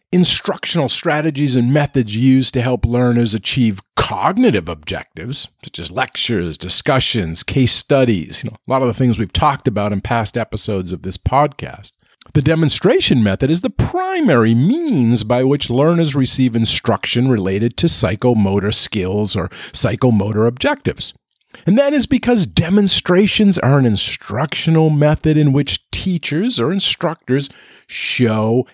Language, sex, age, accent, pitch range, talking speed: English, male, 50-69, American, 110-165 Hz, 140 wpm